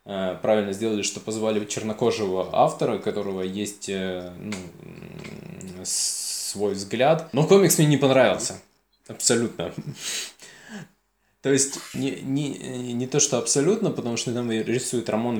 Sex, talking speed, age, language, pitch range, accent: male, 110 wpm, 20-39, Russian, 105-130 Hz, native